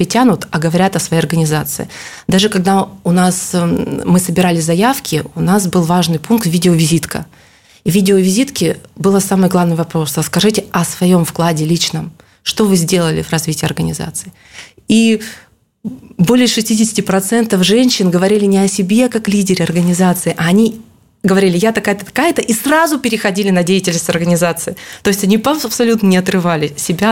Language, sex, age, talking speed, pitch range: Russian, female, 20-39, 155 wpm, 165-195 Hz